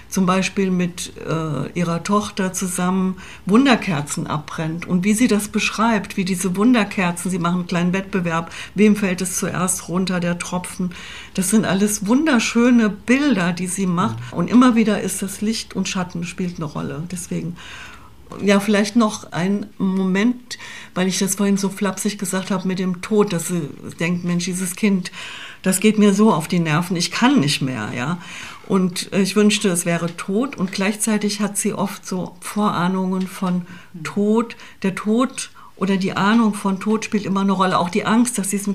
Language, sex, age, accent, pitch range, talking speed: German, female, 60-79, German, 175-205 Hz, 175 wpm